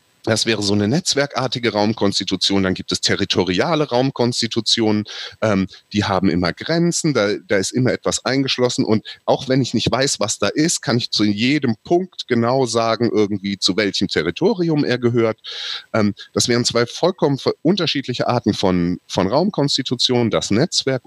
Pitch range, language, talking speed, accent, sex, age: 100-140 Hz, German, 160 wpm, German, male, 30-49